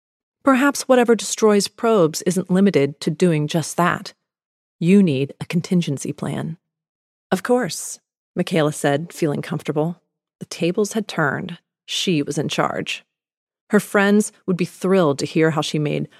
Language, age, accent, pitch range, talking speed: English, 30-49, American, 160-200 Hz, 145 wpm